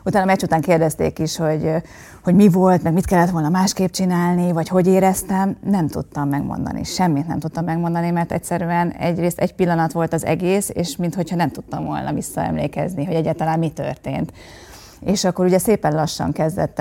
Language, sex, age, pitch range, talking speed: Hungarian, female, 30-49, 155-180 Hz, 175 wpm